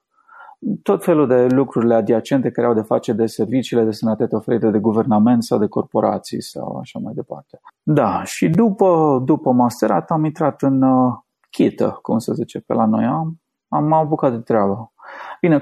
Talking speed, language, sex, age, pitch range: 175 wpm, Romanian, male, 30-49, 115-145 Hz